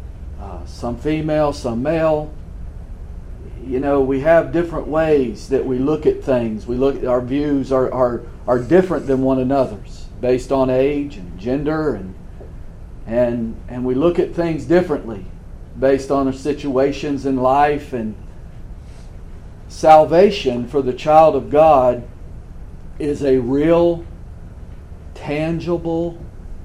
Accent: American